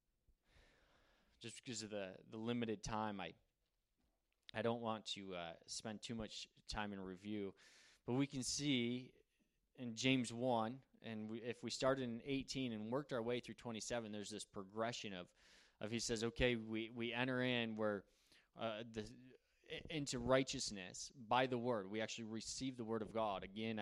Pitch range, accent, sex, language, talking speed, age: 110-145 Hz, American, male, English, 165 wpm, 20-39